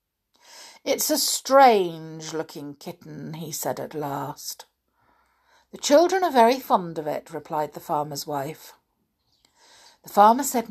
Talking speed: 125 wpm